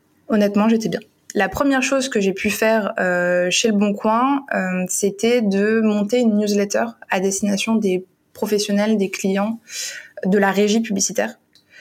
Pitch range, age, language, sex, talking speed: 190-220 Hz, 20-39, French, female, 160 wpm